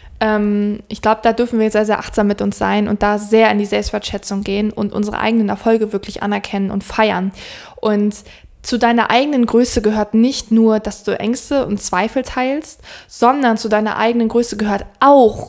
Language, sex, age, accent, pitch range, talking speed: German, female, 20-39, German, 210-235 Hz, 180 wpm